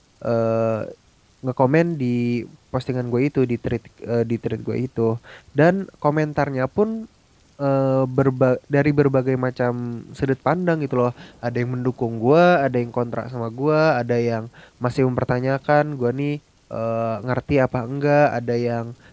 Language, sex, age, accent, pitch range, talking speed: Indonesian, male, 20-39, native, 120-145 Hz, 145 wpm